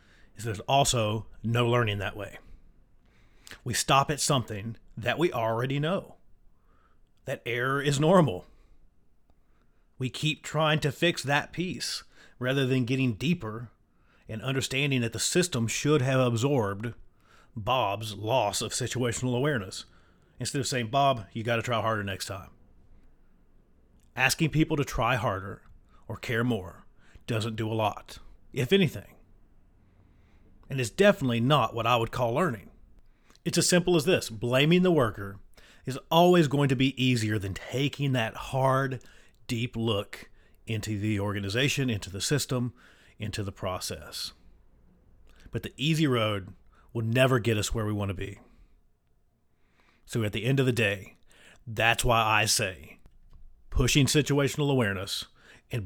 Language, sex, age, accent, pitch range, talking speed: English, male, 30-49, American, 100-135 Hz, 145 wpm